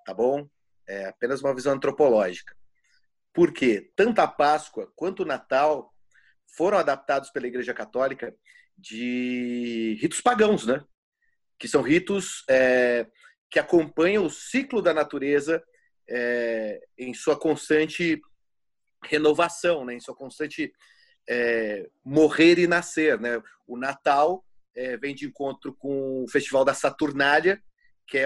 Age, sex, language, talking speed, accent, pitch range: 30-49, male, Portuguese, 120 wpm, Brazilian, 135-175 Hz